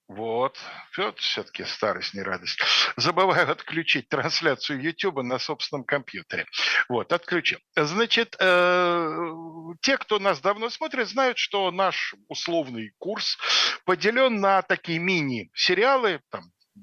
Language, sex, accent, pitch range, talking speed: Russian, male, native, 140-220 Hz, 105 wpm